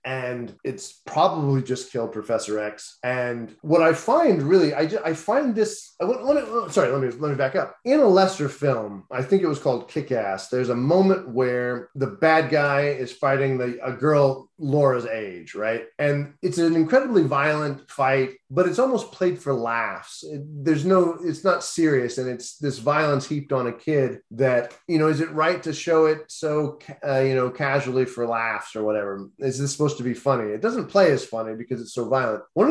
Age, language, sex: 30-49, English, male